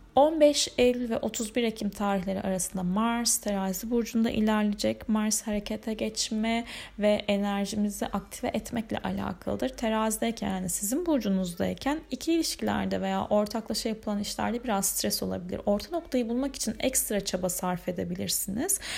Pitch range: 195-245 Hz